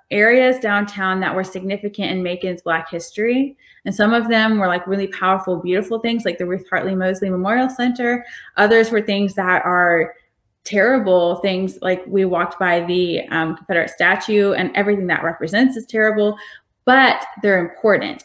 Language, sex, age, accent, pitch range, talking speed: English, female, 20-39, American, 185-215 Hz, 165 wpm